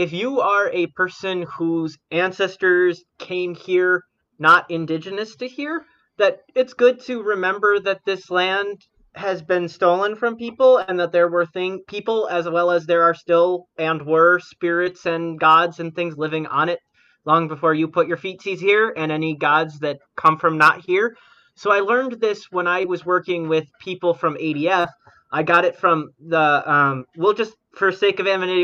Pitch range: 160-195 Hz